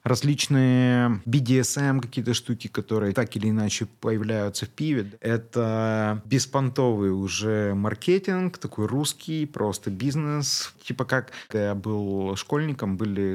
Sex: male